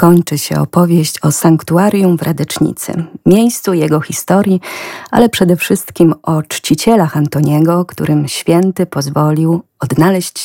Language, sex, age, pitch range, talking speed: Polish, female, 30-49, 140-175 Hz, 115 wpm